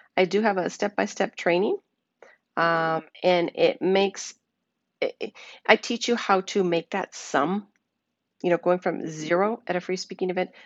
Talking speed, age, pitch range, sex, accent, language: 170 wpm, 40-59, 165-205 Hz, female, American, English